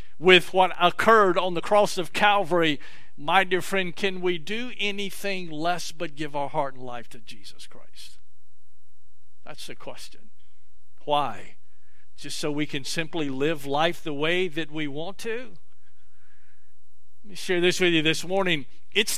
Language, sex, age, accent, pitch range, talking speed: English, male, 50-69, American, 130-200 Hz, 160 wpm